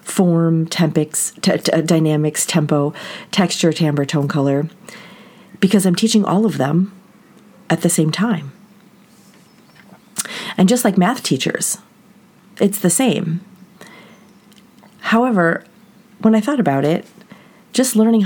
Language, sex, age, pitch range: English, female, 40-59, 165-215 Hz